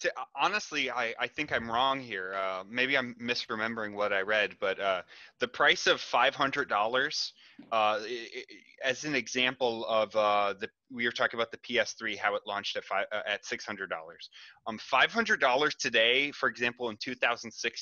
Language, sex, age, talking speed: English, male, 20-39, 190 wpm